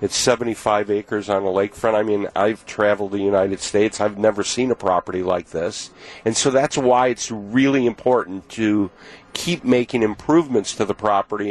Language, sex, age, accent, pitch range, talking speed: English, male, 50-69, American, 105-135 Hz, 175 wpm